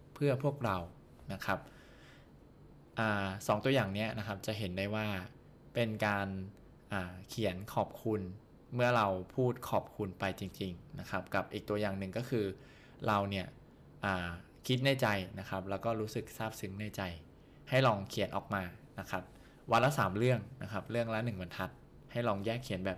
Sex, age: male, 20-39